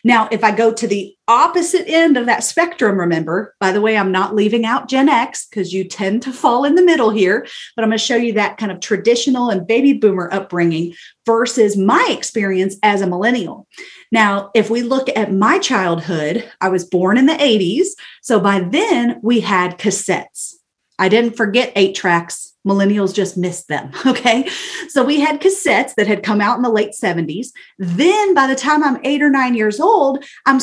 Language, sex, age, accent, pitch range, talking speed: English, female, 40-59, American, 195-280 Hz, 200 wpm